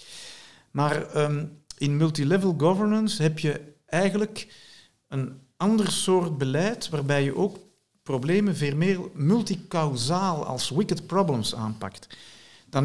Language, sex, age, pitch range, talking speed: Dutch, male, 50-69, 115-180 Hz, 110 wpm